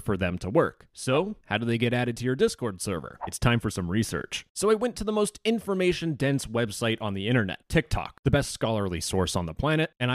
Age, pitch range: 30-49, 120-185 Hz